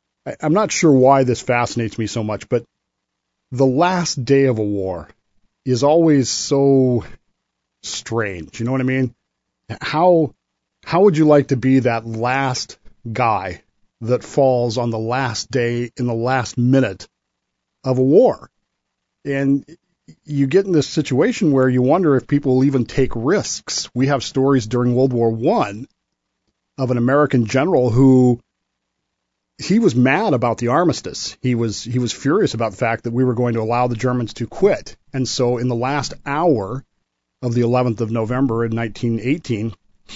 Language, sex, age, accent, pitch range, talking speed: English, male, 40-59, American, 115-140 Hz, 165 wpm